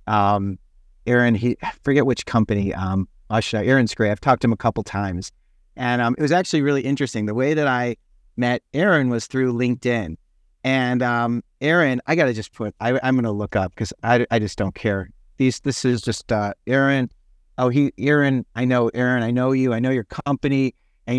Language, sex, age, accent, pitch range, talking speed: English, male, 40-59, American, 105-140 Hz, 205 wpm